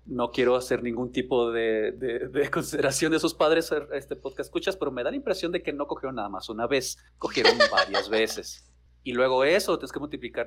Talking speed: 220 wpm